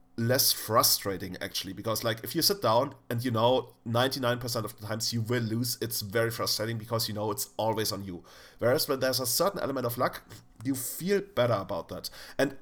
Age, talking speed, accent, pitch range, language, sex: 40-59, 205 wpm, German, 105-135 Hz, English, male